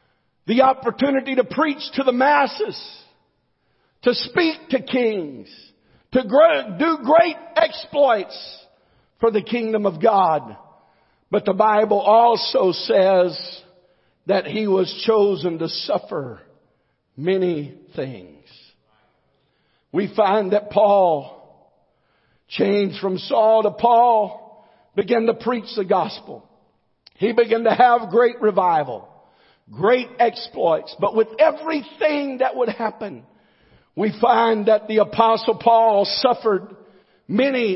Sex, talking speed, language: male, 110 wpm, English